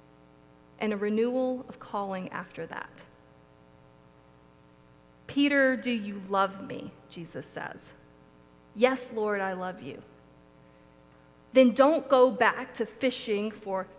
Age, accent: 30-49, American